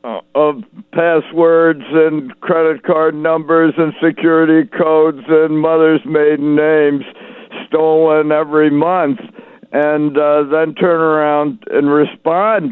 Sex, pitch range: male, 130-165 Hz